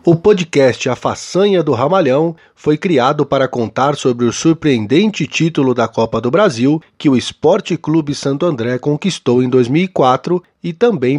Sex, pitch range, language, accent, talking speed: male, 120-160 Hz, Portuguese, Brazilian, 155 wpm